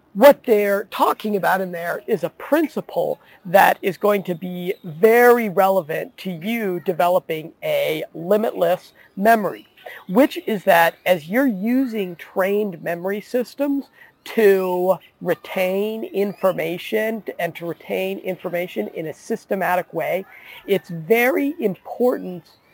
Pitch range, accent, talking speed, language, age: 175-220 Hz, American, 120 wpm, English, 40-59